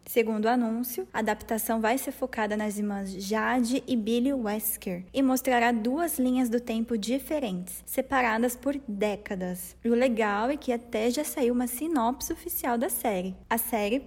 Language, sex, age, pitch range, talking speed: Portuguese, female, 10-29, 215-260 Hz, 160 wpm